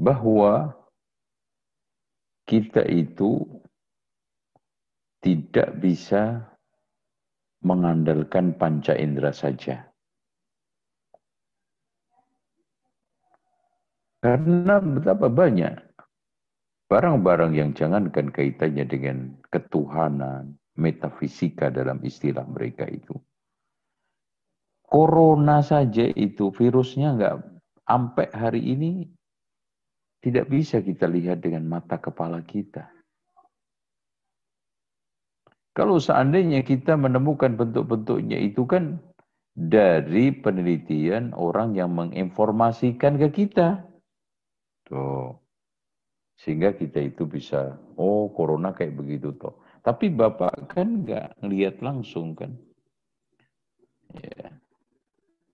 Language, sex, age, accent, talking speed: Indonesian, male, 50-69, native, 75 wpm